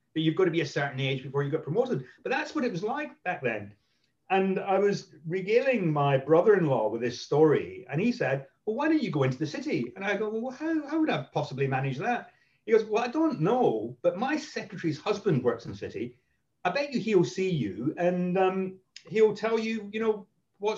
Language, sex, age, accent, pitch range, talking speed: English, male, 40-59, British, 130-200 Hz, 230 wpm